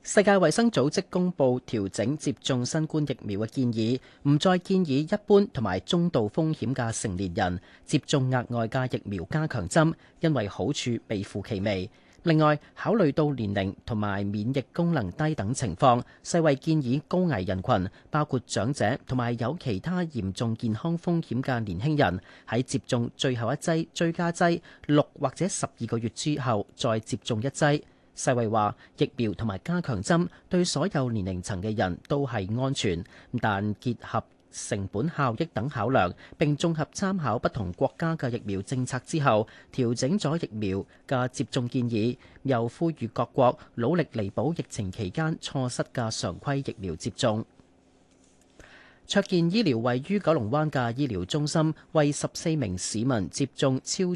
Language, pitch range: Chinese, 110-155 Hz